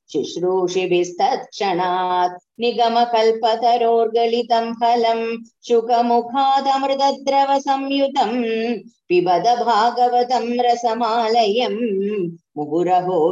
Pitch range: 185-245 Hz